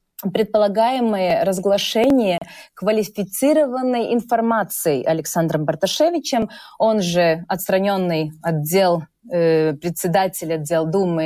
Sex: female